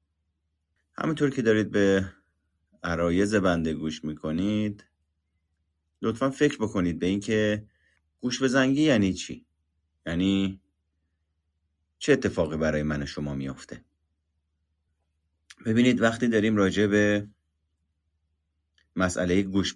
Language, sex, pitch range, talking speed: Persian, male, 80-105 Hz, 95 wpm